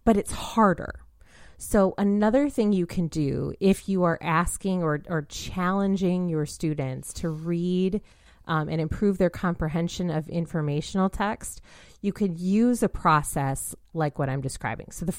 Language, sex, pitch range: English, female, 155-200 Hz